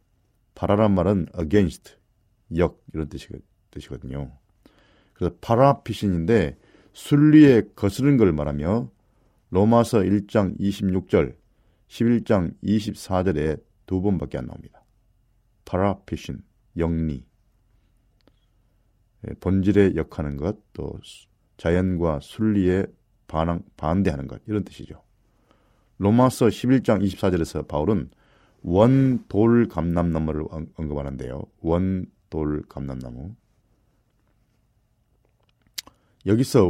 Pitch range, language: 85-110 Hz, Korean